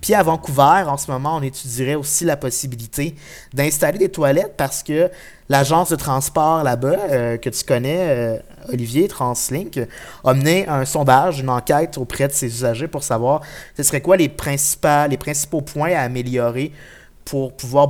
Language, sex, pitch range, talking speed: French, male, 125-150 Hz, 170 wpm